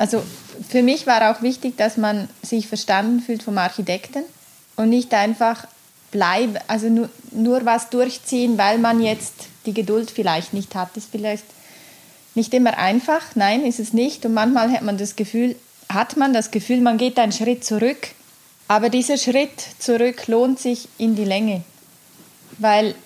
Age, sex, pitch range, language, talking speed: 20-39, female, 205-240 Hz, German, 165 wpm